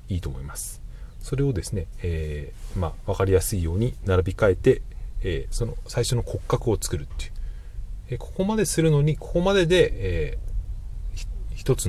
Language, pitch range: Japanese, 85-115 Hz